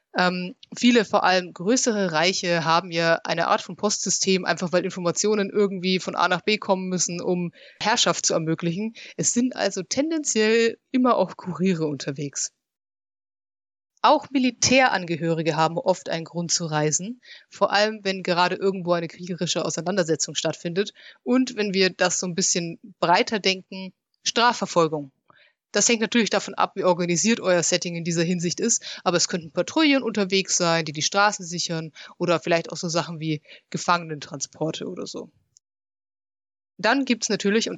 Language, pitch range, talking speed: German, 170-205 Hz, 155 wpm